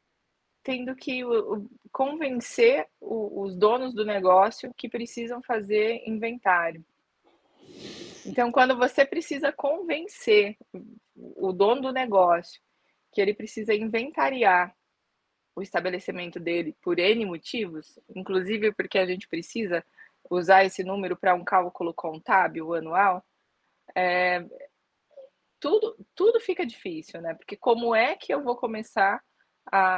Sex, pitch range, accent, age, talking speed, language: female, 175-225 Hz, Brazilian, 20-39, 110 wpm, Portuguese